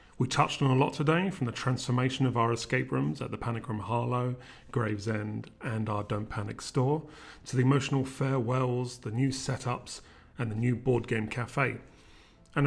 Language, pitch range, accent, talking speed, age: English, 115-135 Hz, British, 180 wpm, 30-49